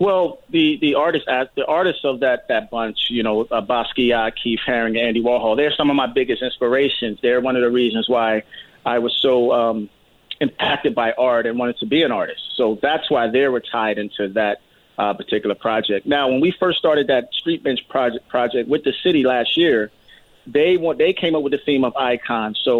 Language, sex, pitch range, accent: English, male, 115-145 Hz, American